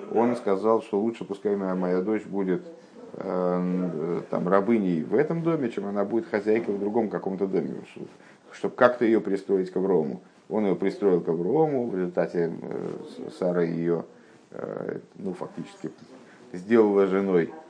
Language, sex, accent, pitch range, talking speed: Russian, male, native, 90-110 Hz, 155 wpm